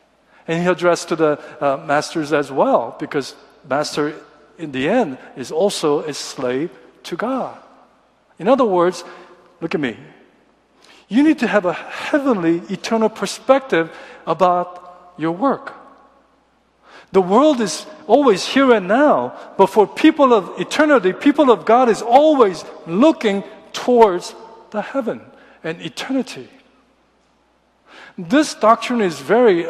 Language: Korean